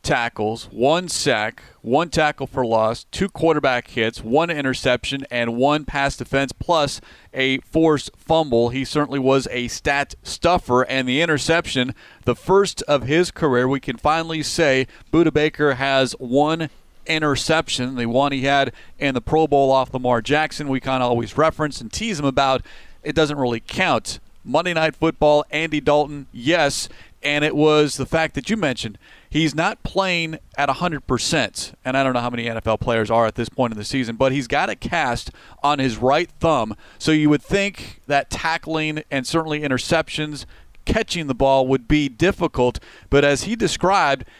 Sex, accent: male, American